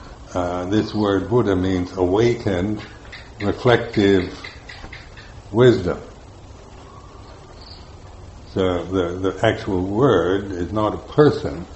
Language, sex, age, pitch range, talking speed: English, male, 60-79, 90-105 Hz, 85 wpm